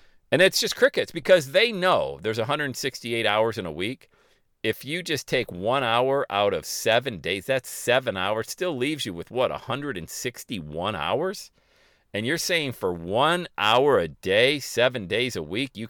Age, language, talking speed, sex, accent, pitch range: 40-59, English, 175 wpm, male, American, 100-135 Hz